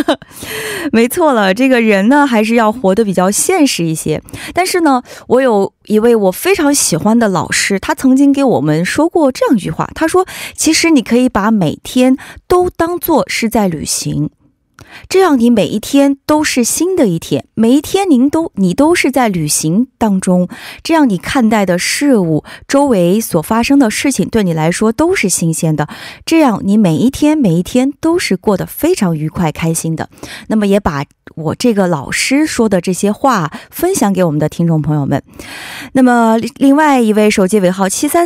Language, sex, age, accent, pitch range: Korean, female, 20-39, Chinese, 180-280 Hz